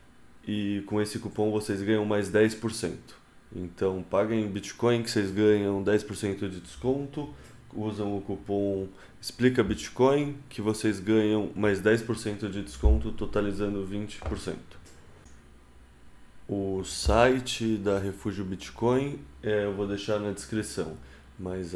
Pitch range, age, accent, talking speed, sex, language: 90-110 Hz, 20-39, Brazilian, 115 wpm, male, Portuguese